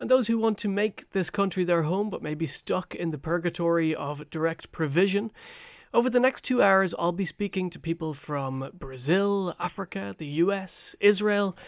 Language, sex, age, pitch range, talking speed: English, male, 30-49, 150-205 Hz, 185 wpm